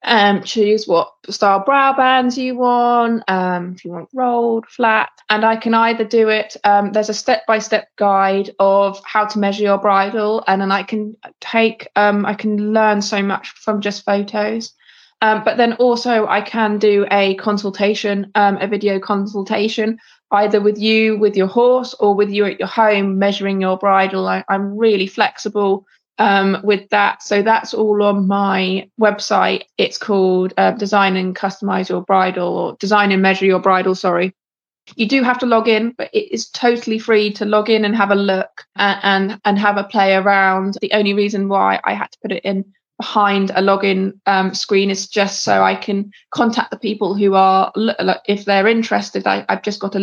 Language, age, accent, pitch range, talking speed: English, 20-39, British, 195-215 Hz, 190 wpm